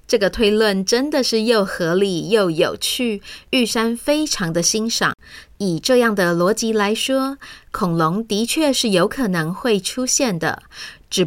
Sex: female